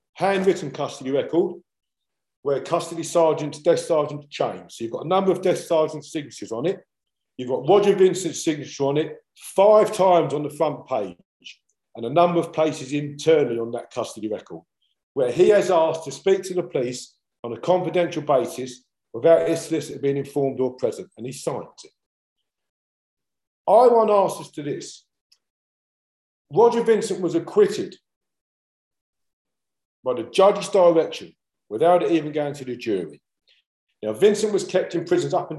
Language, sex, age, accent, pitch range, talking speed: English, male, 50-69, British, 145-185 Hz, 160 wpm